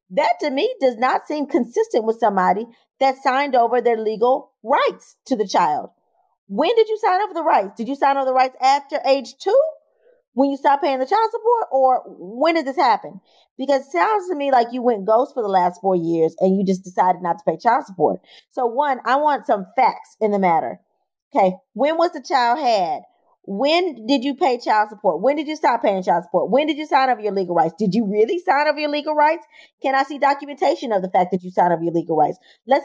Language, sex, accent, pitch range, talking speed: English, female, American, 220-290 Hz, 235 wpm